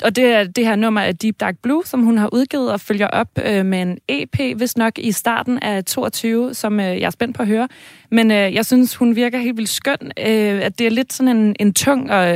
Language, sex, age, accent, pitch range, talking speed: Danish, female, 20-39, native, 200-235 Hz, 260 wpm